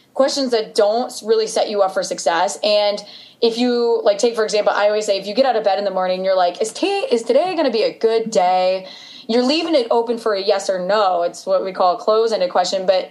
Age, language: 20-39, English